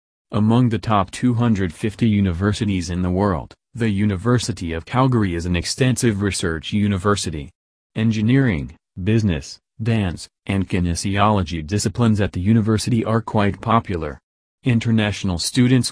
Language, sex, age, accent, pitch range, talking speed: English, male, 30-49, American, 90-115 Hz, 115 wpm